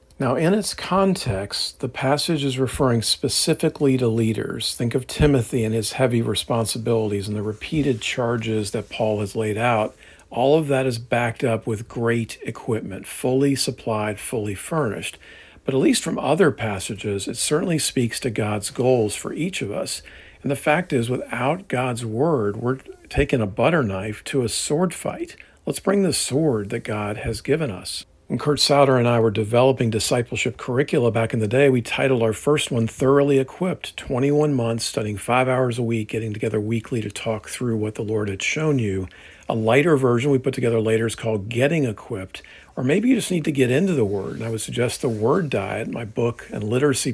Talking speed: 195 wpm